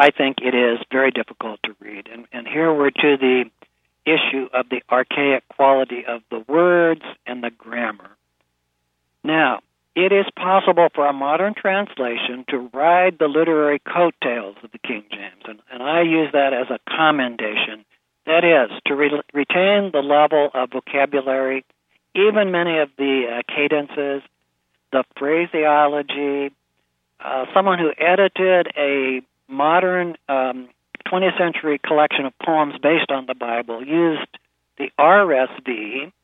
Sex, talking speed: male, 140 wpm